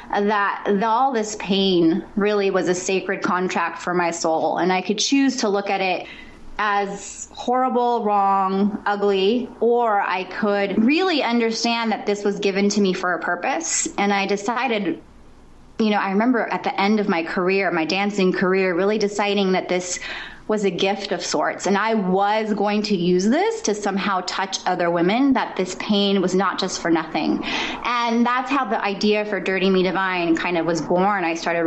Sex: female